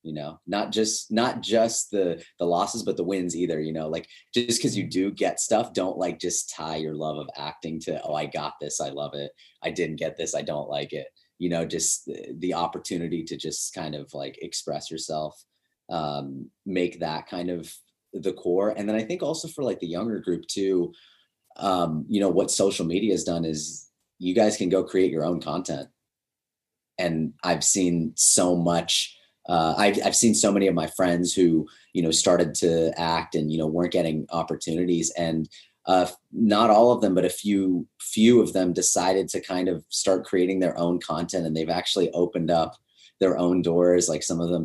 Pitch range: 80-95 Hz